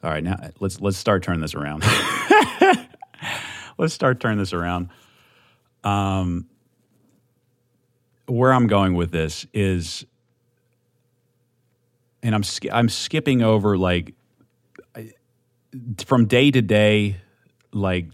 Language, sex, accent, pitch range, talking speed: English, male, American, 100-130 Hz, 115 wpm